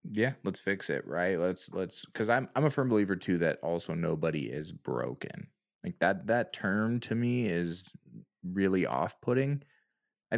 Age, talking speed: 20-39, 170 wpm